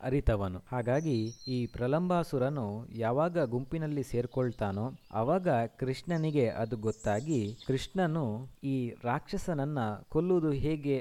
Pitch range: 115-145 Hz